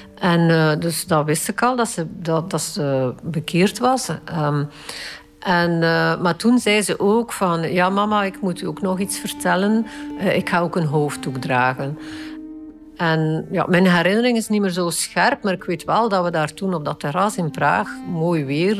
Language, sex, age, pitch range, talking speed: Dutch, female, 50-69, 155-205 Hz, 200 wpm